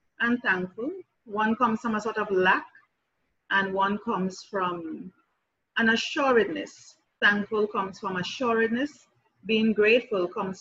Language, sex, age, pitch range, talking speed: English, female, 30-49, 185-240 Hz, 125 wpm